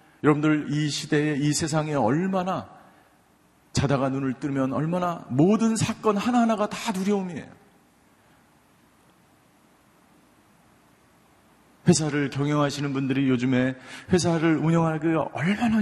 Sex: male